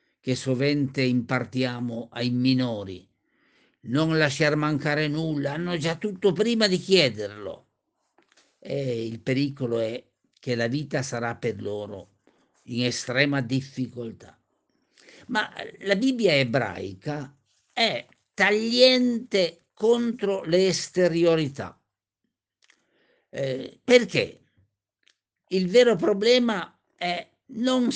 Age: 50-69